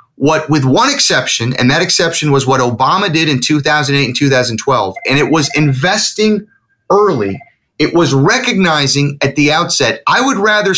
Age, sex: 30-49, male